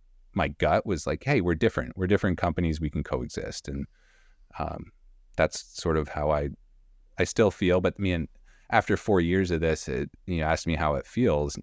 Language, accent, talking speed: English, American, 200 wpm